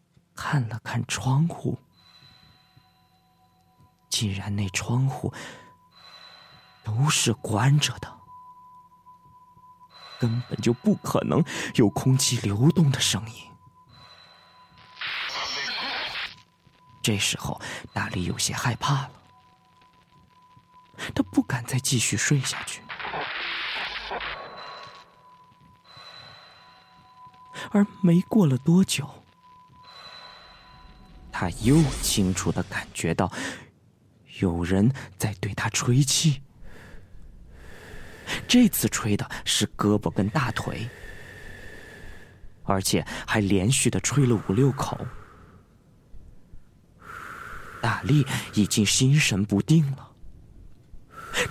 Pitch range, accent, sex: 100-145 Hz, native, male